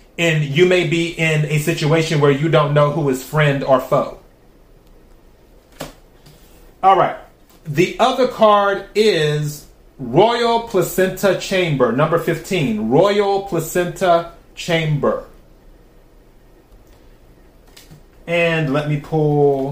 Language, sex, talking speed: English, male, 105 wpm